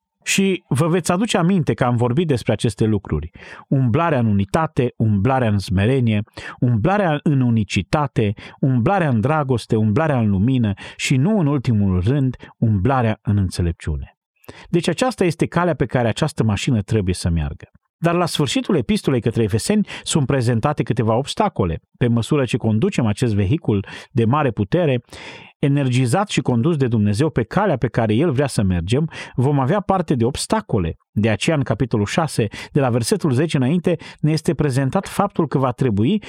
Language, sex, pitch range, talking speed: Romanian, male, 110-160 Hz, 165 wpm